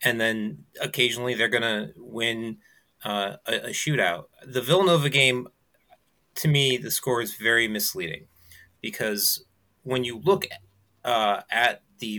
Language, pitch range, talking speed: English, 120-185 Hz, 145 wpm